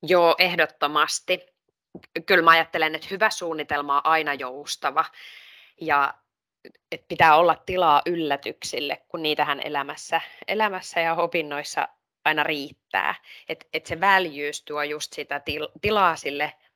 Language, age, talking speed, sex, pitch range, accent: Finnish, 20-39, 125 wpm, female, 145-175 Hz, native